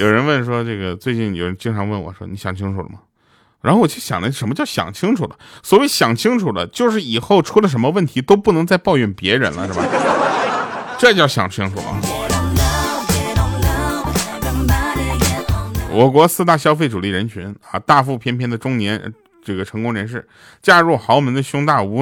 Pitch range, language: 100-140 Hz, Chinese